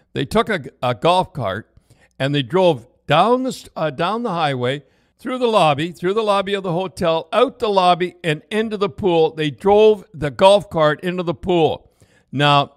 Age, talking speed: 60-79, 190 wpm